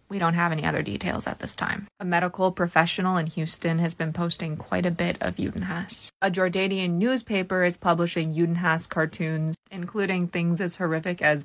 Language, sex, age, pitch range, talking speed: English, female, 20-39, 165-195 Hz, 180 wpm